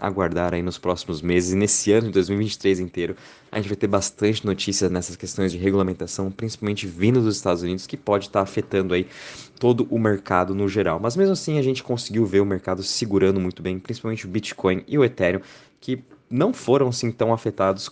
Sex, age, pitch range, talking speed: male, 20-39, 95-115 Hz, 200 wpm